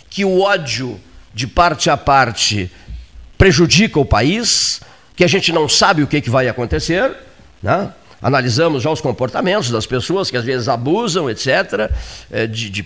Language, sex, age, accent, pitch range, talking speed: Portuguese, male, 50-69, Brazilian, 120-160 Hz, 155 wpm